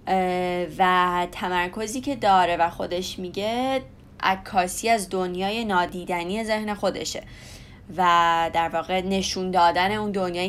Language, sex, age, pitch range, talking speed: Persian, female, 20-39, 175-210 Hz, 115 wpm